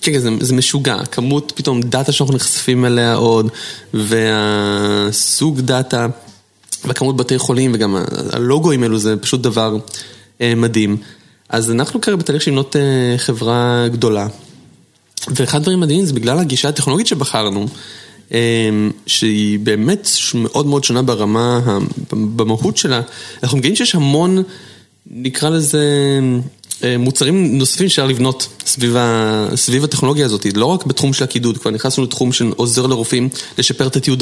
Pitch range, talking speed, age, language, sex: 115-135 Hz, 140 wpm, 20-39, Hebrew, male